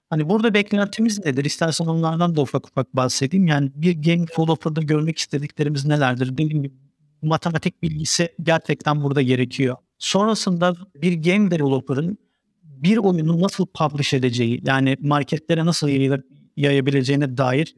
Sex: male